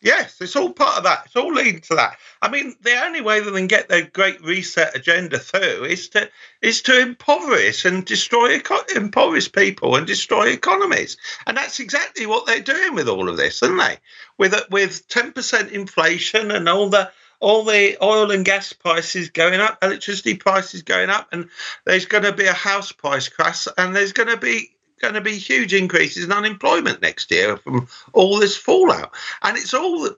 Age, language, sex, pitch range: 50-69, English, male, 185-270 Hz